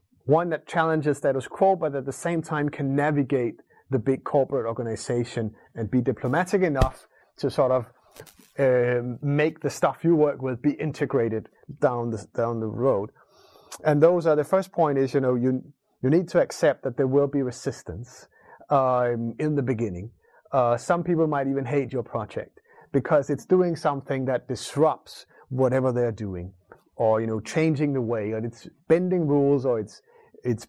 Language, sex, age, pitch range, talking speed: English, male, 30-49, 120-150 Hz, 175 wpm